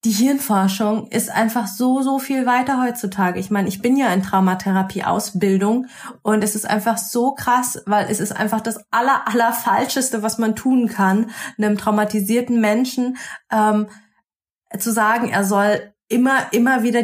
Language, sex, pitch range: German, female, 195-235 Hz